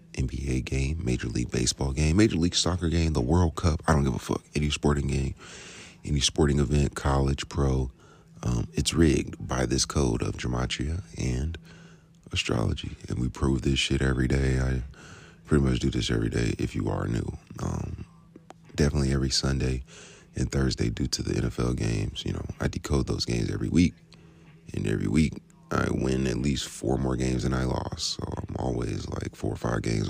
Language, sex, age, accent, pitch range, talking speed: English, male, 30-49, American, 65-95 Hz, 185 wpm